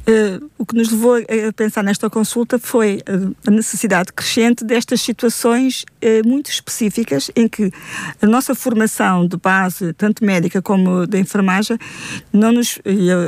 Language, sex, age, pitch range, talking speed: Portuguese, female, 50-69, 200-235 Hz, 130 wpm